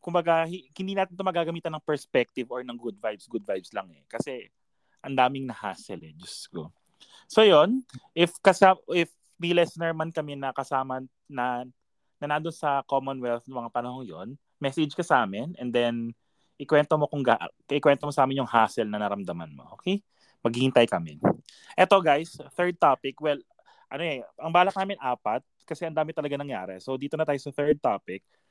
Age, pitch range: 20-39, 120-160 Hz